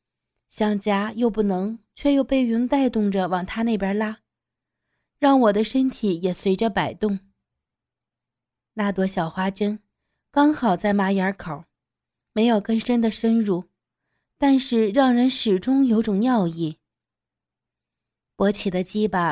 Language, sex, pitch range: Chinese, female, 190-235 Hz